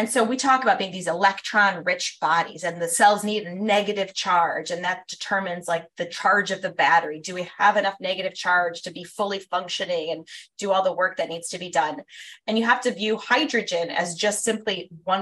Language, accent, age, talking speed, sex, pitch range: English, American, 20-39, 220 wpm, female, 180-230 Hz